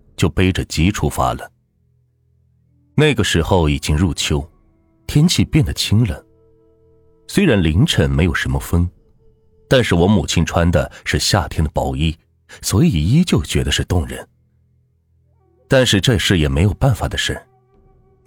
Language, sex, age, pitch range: Chinese, male, 30-49, 85-125 Hz